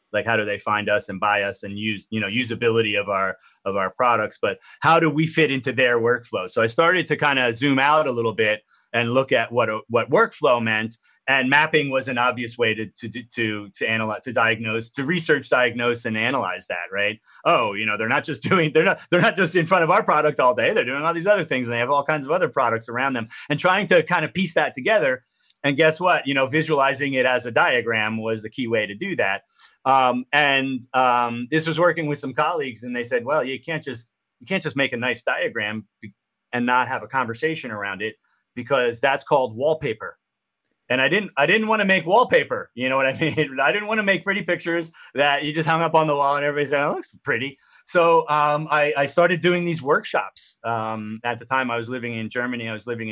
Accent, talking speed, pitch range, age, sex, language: American, 240 wpm, 115-155 Hz, 30-49, male, English